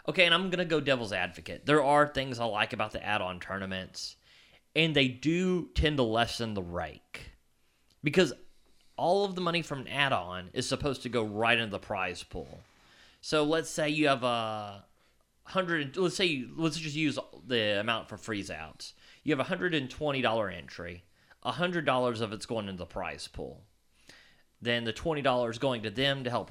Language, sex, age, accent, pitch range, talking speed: English, male, 30-49, American, 105-145 Hz, 185 wpm